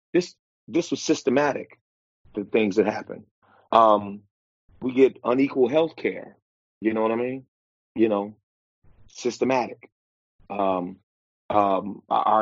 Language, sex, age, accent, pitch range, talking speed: English, male, 30-49, American, 95-115 Hz, 120 wpm